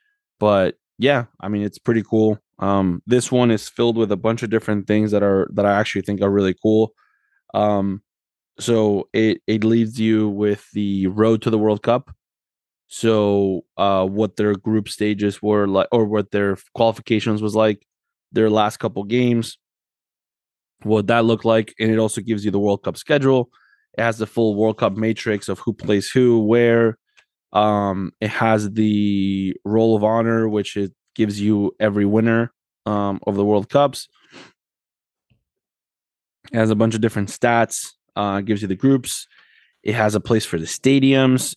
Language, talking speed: English, 170 wpm